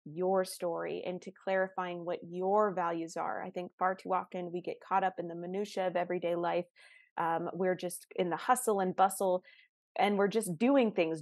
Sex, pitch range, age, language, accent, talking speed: female, 175-200 Hz, 20-39, English, American, 200 wpm